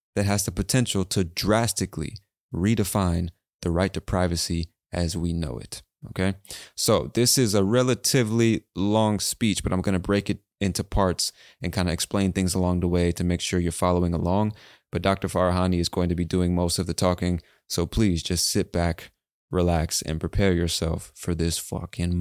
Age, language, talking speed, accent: 20-39, English, 185 wpm, American